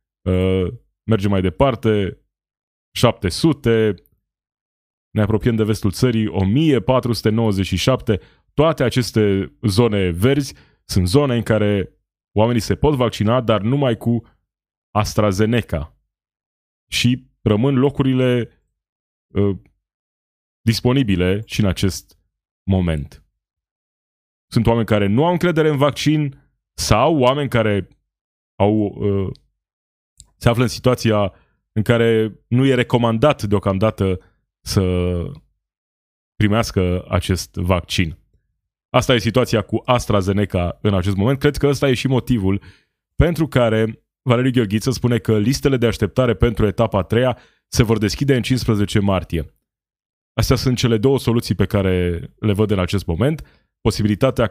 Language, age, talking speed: Romanian, 20-39, 120 wpm